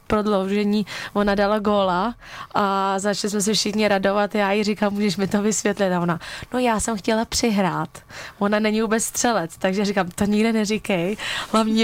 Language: Czech